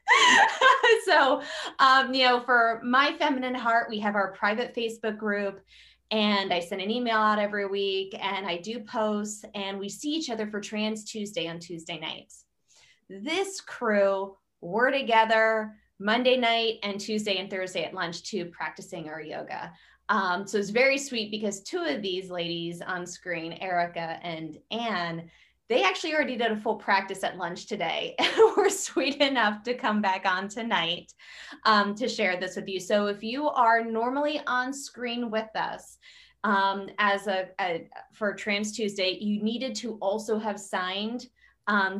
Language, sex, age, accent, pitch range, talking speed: English, female, 20-39, American, 195-245 Hz, 165 wpm